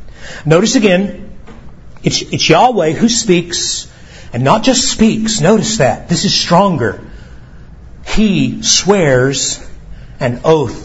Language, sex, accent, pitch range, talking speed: English, male, American, 140-200 Hz, 110 wpm